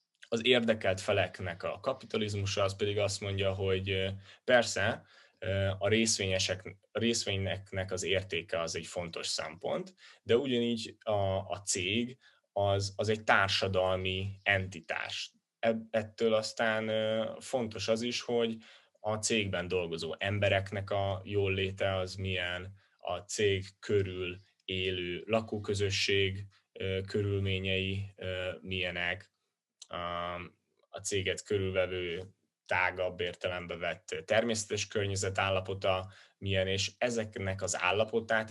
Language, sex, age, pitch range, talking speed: Hungarian, male, 10-29, 95-105 Hz, 100 wpm